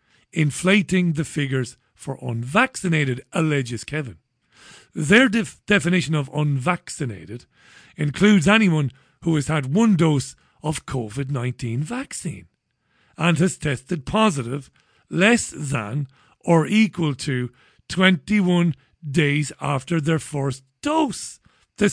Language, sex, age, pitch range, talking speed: English, male, 40-59, 135-185 Hz, 100 wpm